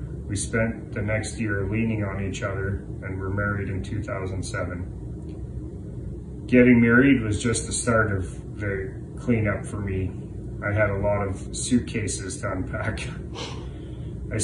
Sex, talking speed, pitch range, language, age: male, 145 wpm, 100-115 Hz, English, 30-49